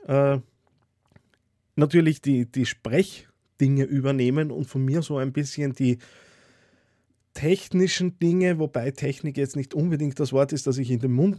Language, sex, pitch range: German, male, 120-145 Hz